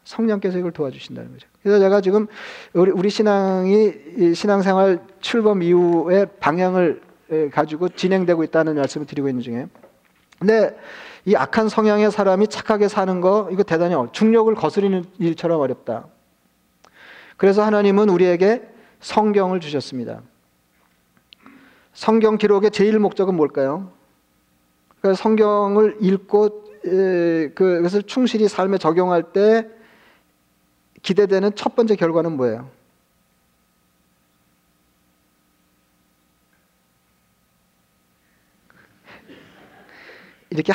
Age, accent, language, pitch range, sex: 40-59, native, Korean, 145-205 Hz, male